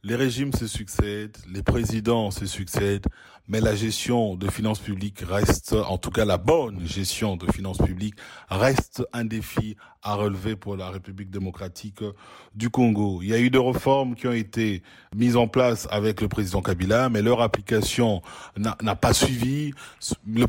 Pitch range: 105-130 Hz